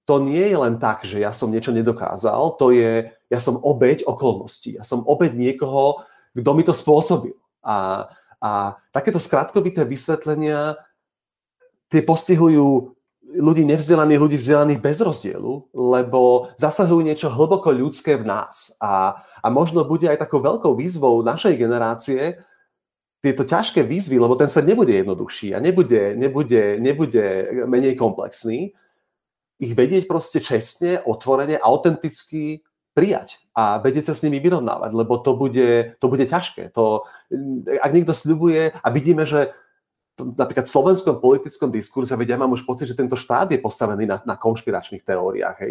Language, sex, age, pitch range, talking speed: Slovak, male, 30-49, 120-160 Hz, 150 wpm